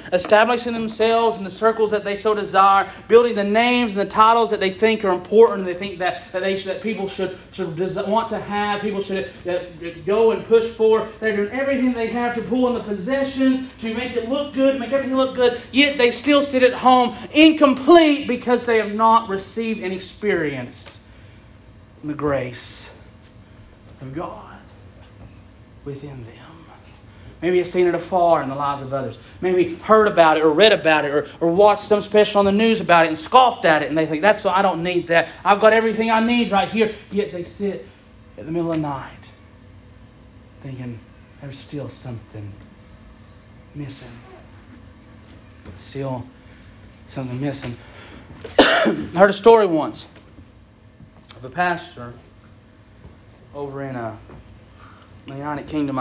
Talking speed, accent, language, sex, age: 170 wpm, American, English, male, 30-49